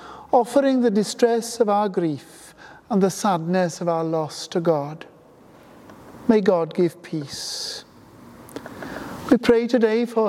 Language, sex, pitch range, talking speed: English, male, 170-235 Hz, 130 wpm